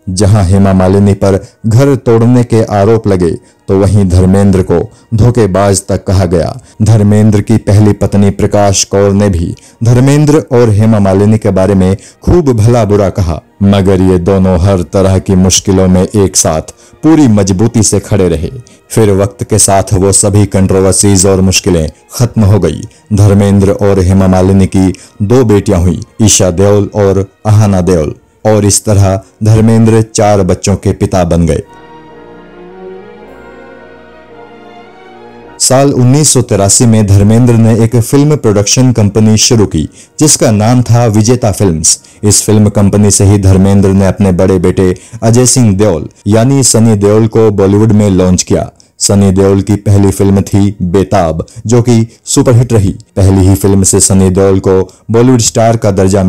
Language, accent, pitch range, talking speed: Hindi, native, 95-110 Hz, 155 wpm